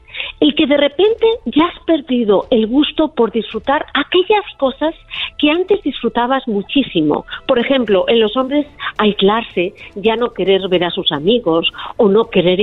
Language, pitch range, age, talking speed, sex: Spanish, 195-285 Hz, 50-69, 155 wpm, female